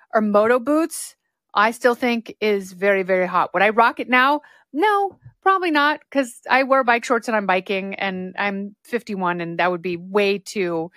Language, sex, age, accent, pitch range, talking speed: English, female, 30-49, American, 190-250 Hz, 190 wpm